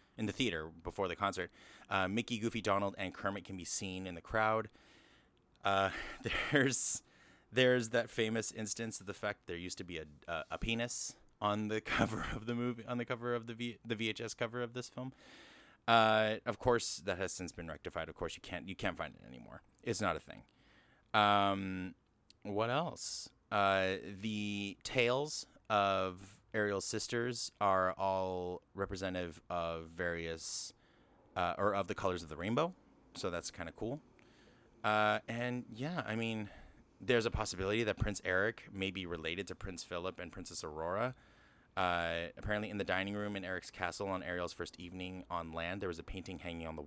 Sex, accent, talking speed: male, American, 180 wpm